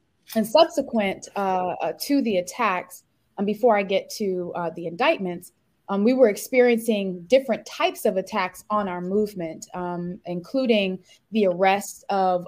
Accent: American